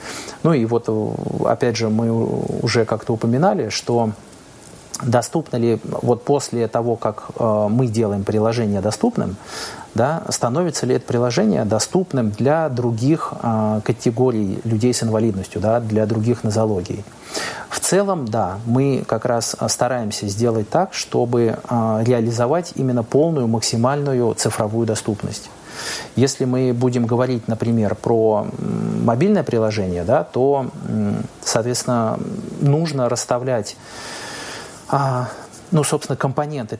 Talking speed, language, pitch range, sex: 105 wpm, Russian, 110-135 Hz, male